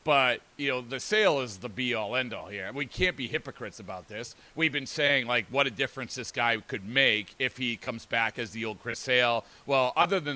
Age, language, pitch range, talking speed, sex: 40-59, English, 115-140 Hz, 225 wpm, male